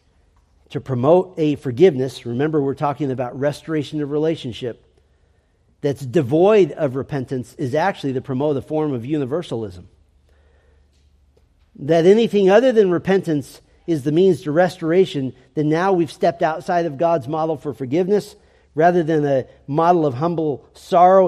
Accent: American